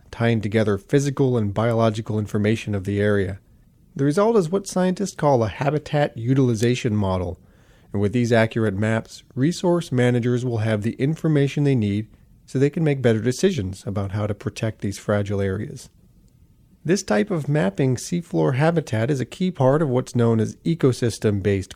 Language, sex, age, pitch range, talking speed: English, male, 30-49, 105-140 Hz, 165 wpm